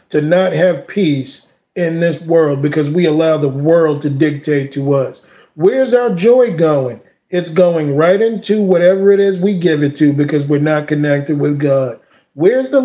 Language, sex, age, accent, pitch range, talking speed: English, male, 40-59, American, 155-215 Hz, 180 wpm